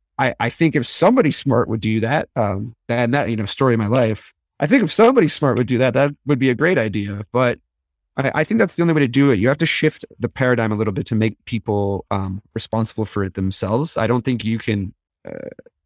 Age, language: 30-49, English